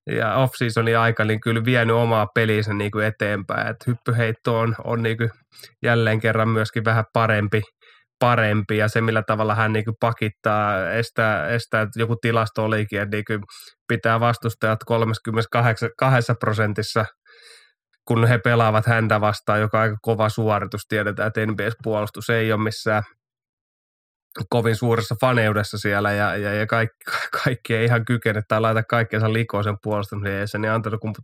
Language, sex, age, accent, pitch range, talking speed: Finnish, male, 20-39, native, 105-115 Hz, 155 wpm